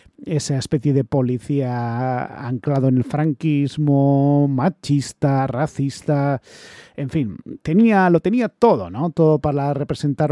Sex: male